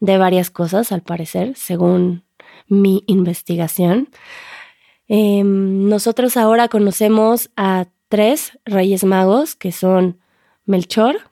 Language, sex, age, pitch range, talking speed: Spanish, female, 20-39, 180-215 Hz, 100 wpm